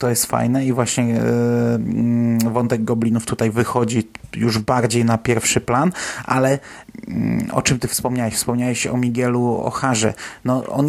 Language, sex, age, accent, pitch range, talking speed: Polish, male, 30-49, native, 115-130 Hz, 140 wpm